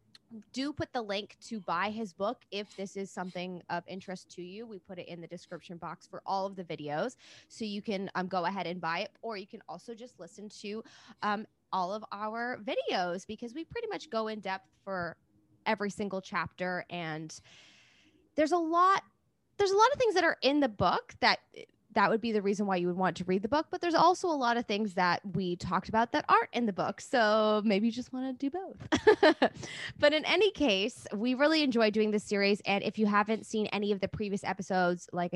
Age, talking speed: 20-39, 225 wpm